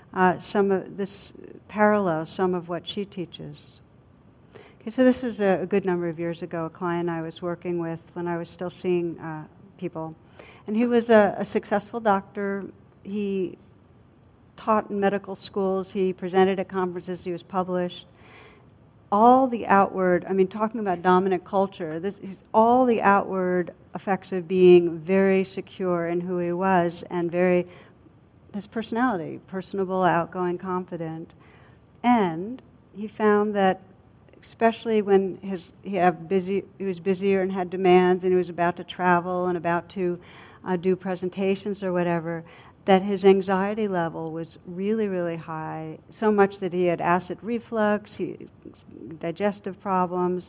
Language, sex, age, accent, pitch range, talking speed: English, female, 60-79, American, 175-200 Hz, 155 wpm